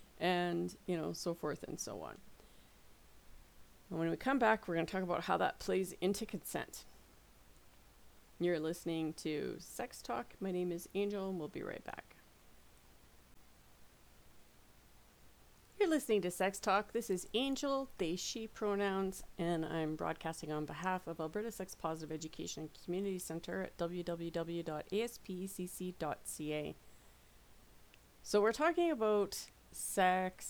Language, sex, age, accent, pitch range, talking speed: English, female, 40-59, American, 155-195 Hz, 130 wpm